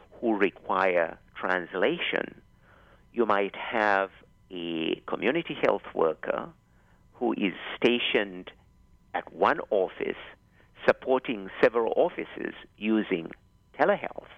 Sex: male